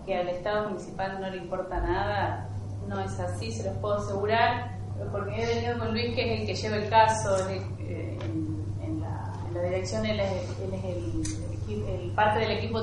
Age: 30-49